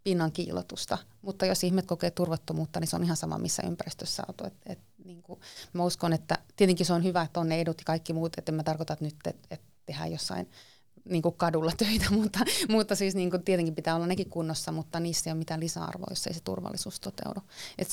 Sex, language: female, Finnish